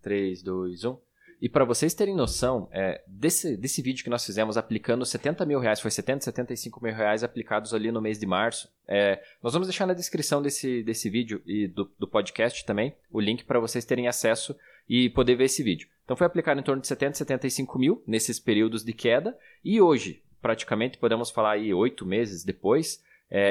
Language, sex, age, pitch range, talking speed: Portuguese, male, 20-39, 115-135 Hz, 200 wpm